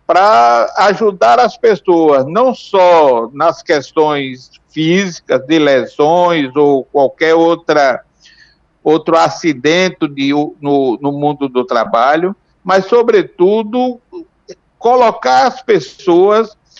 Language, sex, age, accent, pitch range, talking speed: Portuguese, male, 60-79, Brazilian, 155-210 Hz, 95 wpm